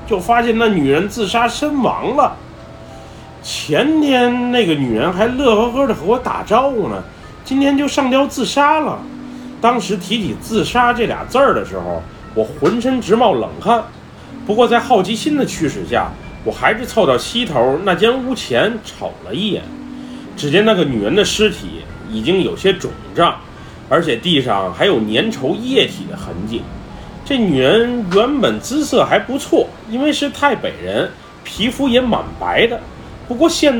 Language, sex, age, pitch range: Chinese, male, 30-49, 155-255 Hz